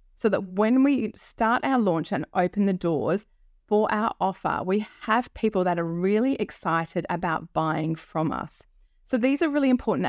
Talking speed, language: 180 wpm, English